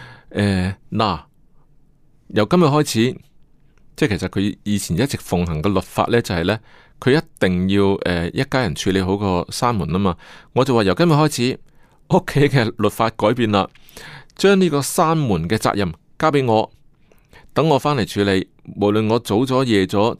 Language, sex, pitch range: Chinese, male, 100-145 Hz